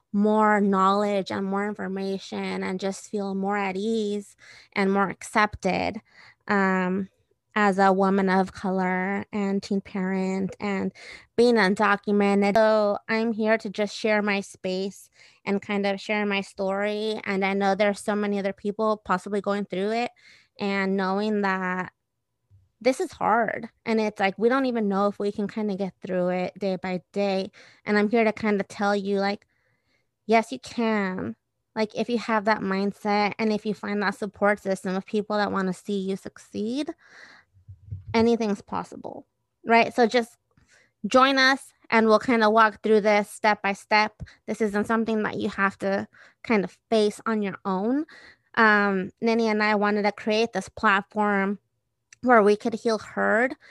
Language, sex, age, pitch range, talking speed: English, female, 20-39, 195-220 Hz, 170 wpm